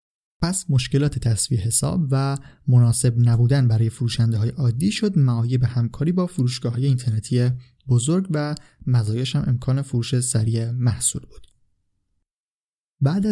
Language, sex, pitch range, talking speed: Persian, male, 120-145 Hz, 120 wpm